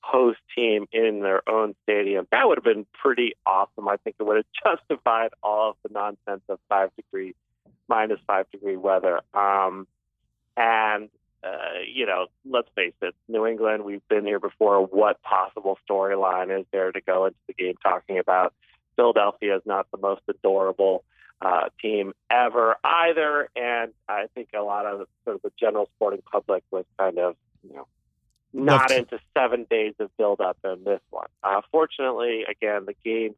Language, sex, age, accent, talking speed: English, male, 40-59, American, 165 wpm